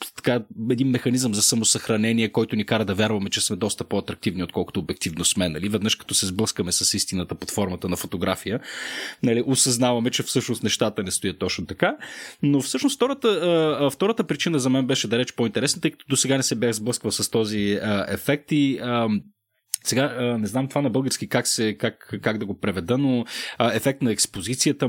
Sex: male